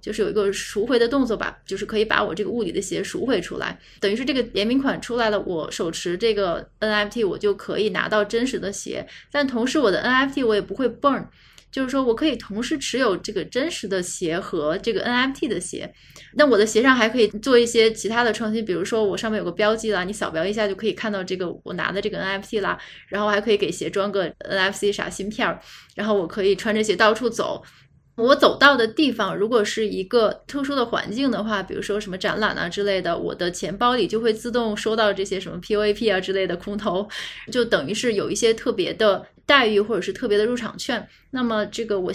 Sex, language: female, Chinese